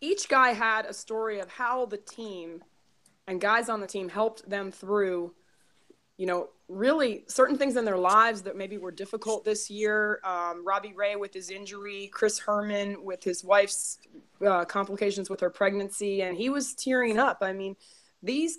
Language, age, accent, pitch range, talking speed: English, 20-39, American, 190-230 Hz, 180 wpm